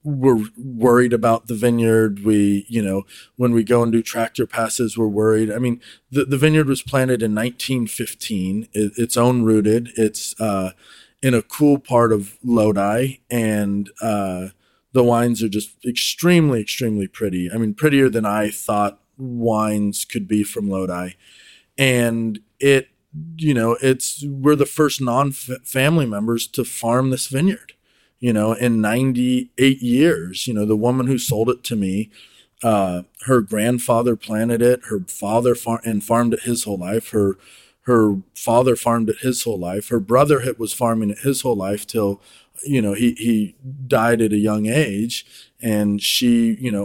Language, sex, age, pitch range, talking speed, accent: English, male, 30-49, 105-125 Hz, 165 wpm, American